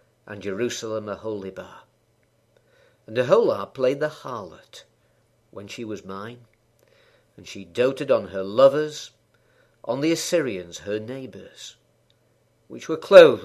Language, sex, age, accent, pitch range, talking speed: English, male, 50-69, British, 110-140 Hz, 120 wpm